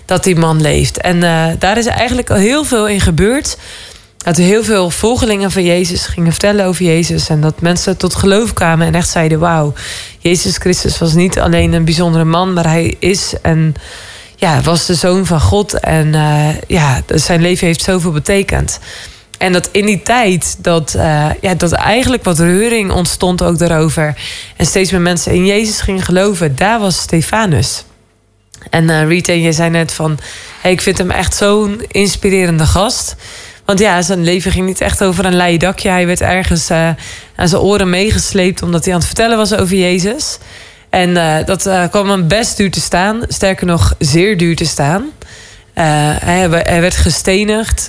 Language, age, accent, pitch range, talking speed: Dutch, 20-39, Dutch, 165-200 Hz, 185 wpm